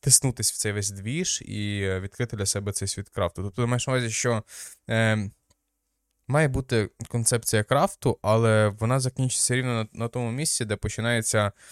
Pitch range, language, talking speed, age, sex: 95-115 Hz, Ukrainian, 165 wpm, 20-39, male